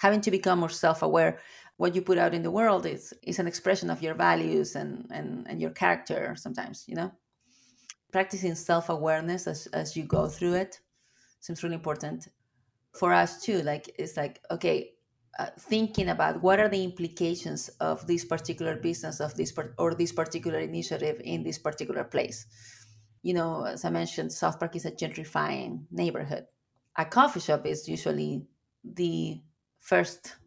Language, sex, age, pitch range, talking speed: English, female, 30-49, 120-180 Hz, 165 wpm